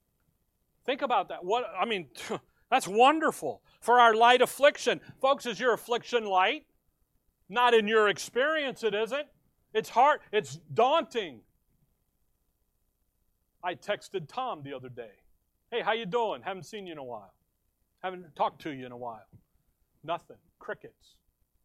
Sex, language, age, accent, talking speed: male, English, 40-59, American, 145 wpm